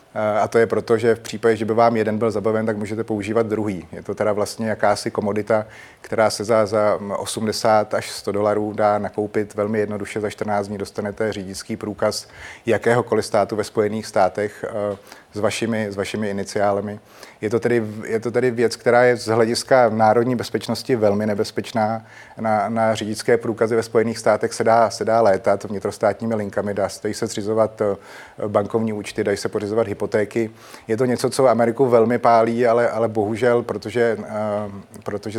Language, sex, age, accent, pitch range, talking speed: Czech, male, 30-49, native, 105-115 Hz, 170 wpm